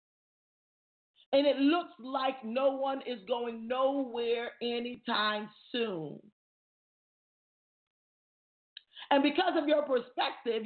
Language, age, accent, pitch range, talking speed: English, 40-59, American, 235-300 Hz, 90 wpm